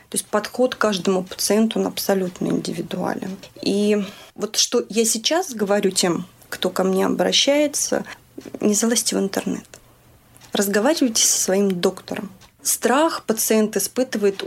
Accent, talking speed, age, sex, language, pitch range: native, 125 wpm, 30-49, female, Russian, 185-220 Hz